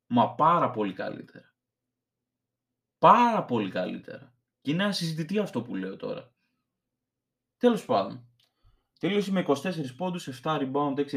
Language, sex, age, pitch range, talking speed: Greek, male, 20-39, 120-150 Hz, 125 wpm